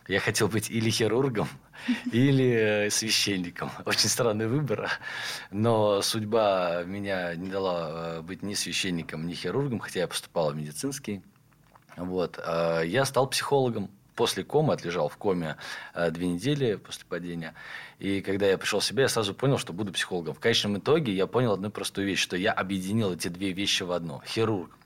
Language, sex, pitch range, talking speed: Russian, male, 85-110 Hz, 160 wpm